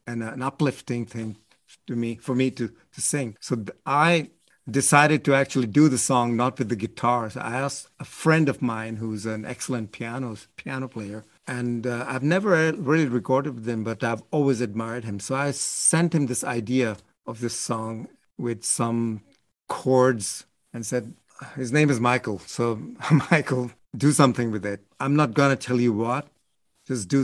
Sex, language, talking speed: male, English, 180 wpm